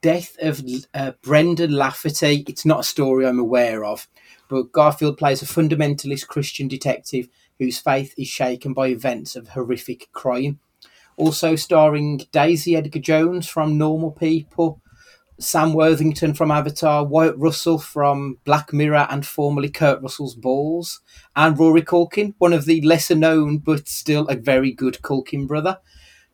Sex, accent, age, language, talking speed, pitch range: male, British, 30-49, English, 145 wpm, 135-165 Hz